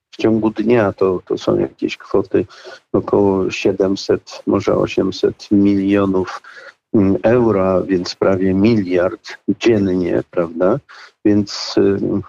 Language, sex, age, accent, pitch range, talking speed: Polish, male, 50-69, native, 95-110 Hz, 100 wpm